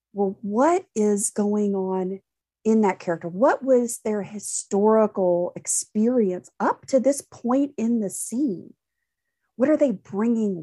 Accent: American